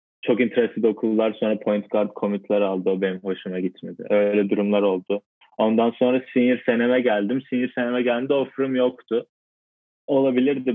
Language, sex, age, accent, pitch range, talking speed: Turkish, male, 20-39, native, 95-110 Hz, 145 wpm